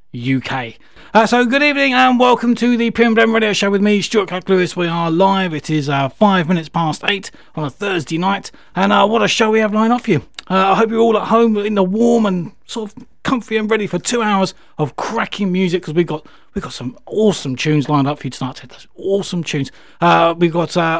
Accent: British